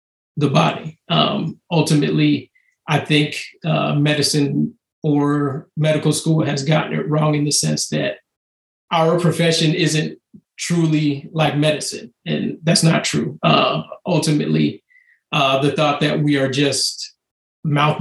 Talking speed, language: 130 wpm, English